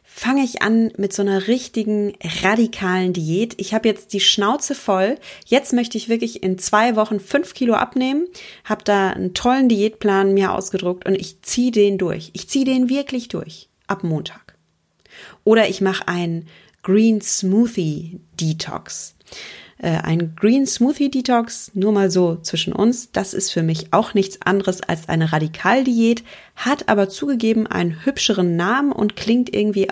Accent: German